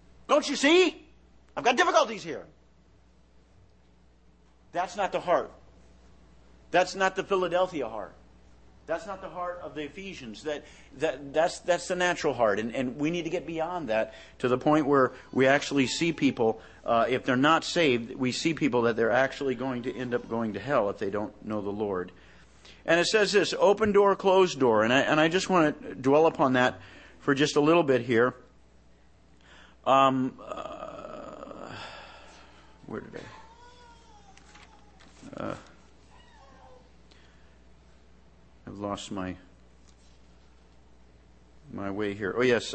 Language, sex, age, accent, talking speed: English, male, 50-69, American, 150 wpm